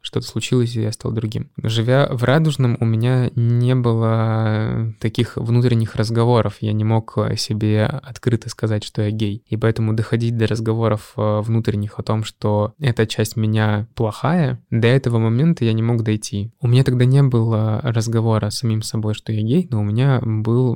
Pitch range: 110-125 Hz